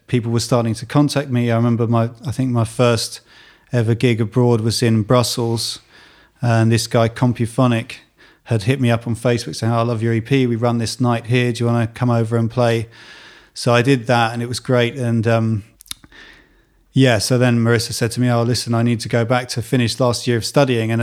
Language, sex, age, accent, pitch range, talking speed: English, male, 30-49, British, 115-125 Hz, 225 wpm